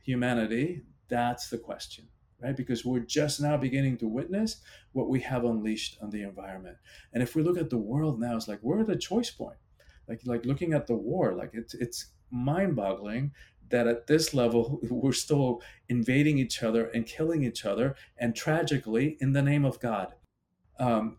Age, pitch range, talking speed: 40-59, 115-145 Hz, 185 wpm